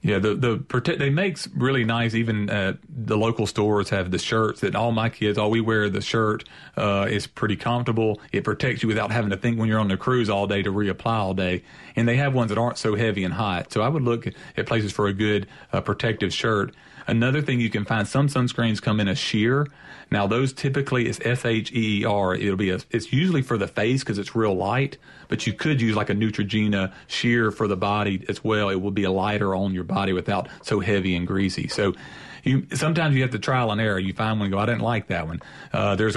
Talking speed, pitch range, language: 245 wpm, 100-115 Hz, English